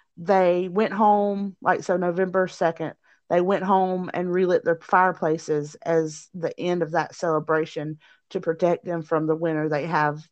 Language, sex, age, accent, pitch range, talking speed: English, female, 40-59, American, 165-200 Hz, 165 wpm